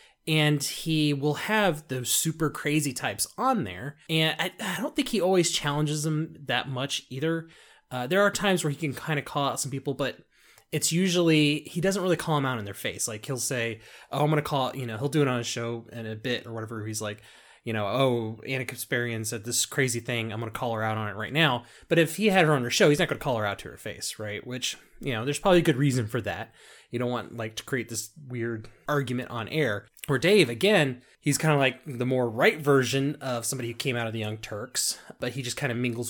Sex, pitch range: male, 115-150 Hz